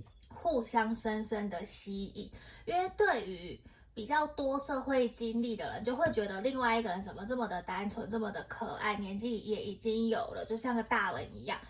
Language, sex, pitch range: Chinese, female, 215-255 Hz